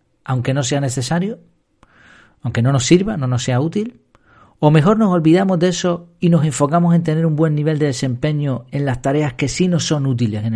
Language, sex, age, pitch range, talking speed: Spanish, male, 40-59, 120-160 Hz, 210 wpm